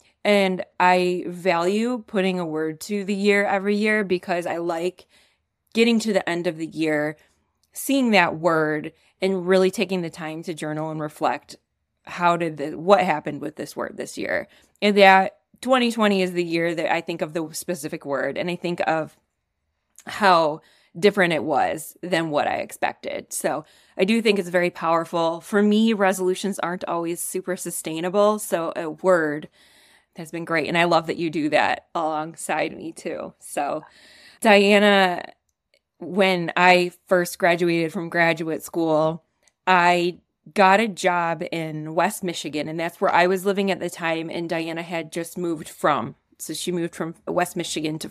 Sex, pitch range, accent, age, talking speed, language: female, 165-190 Hz, American, 20-39, 170 wpm, English